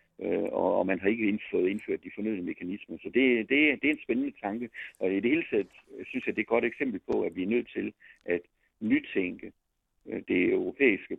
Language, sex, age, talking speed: Danish, male, 50-69, 215 wpm